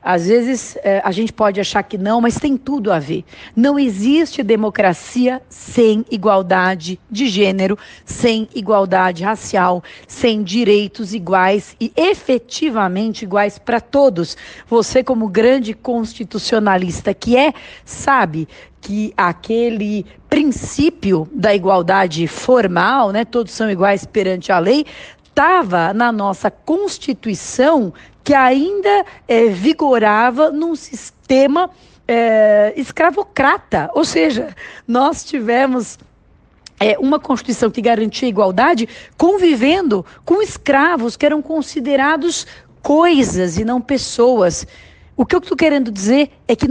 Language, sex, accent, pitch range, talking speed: Portuguese, female, Brazilian, 205-275 Hz, 115 wpm